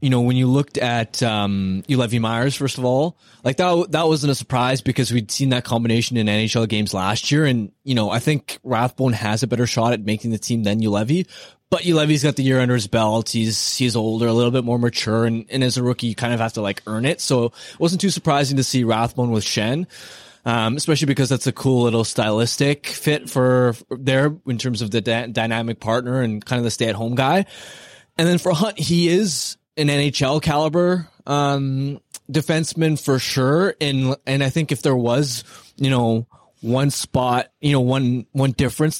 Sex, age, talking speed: male, 20-39, 215 wpm